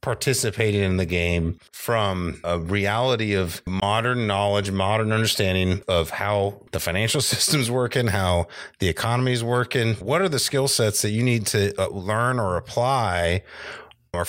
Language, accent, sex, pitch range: English, American, male, 95-120 Hz